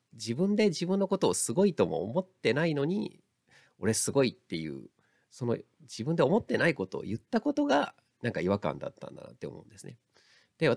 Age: 40-59